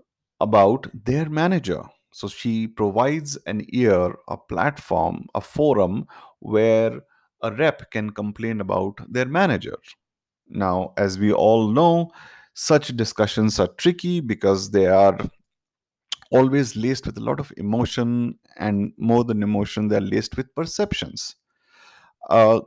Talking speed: 125 wpm